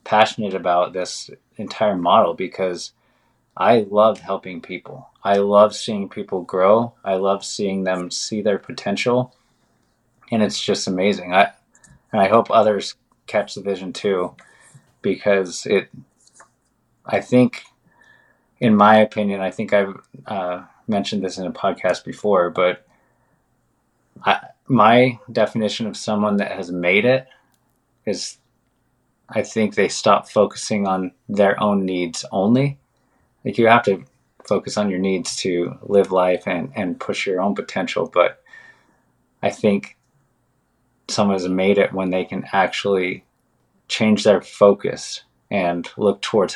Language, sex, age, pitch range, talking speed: English, male, 20-39, 95-110 Hz, 135 wpm